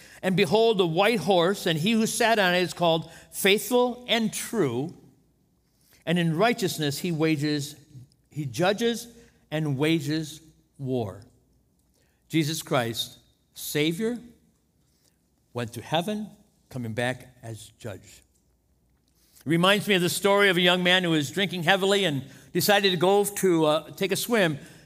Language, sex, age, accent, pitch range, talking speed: English, male, 60-79, American, 140-200 Hz, 140 wpm